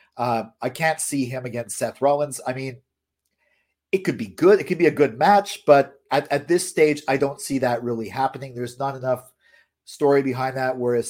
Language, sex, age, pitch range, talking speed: English, male, 50-69, 120-155 Hz, 205 wpm